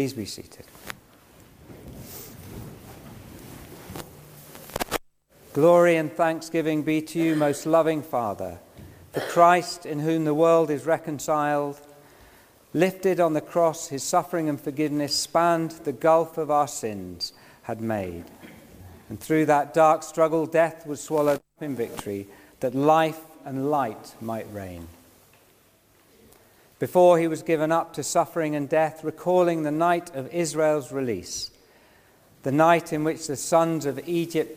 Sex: male